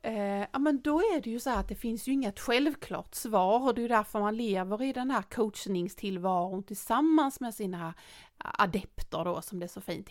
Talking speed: 215 wpm